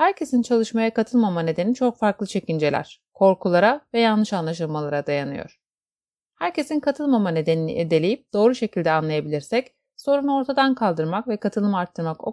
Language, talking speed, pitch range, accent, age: Turkish, 125 wpm, 170-245 Hz, native, 30-49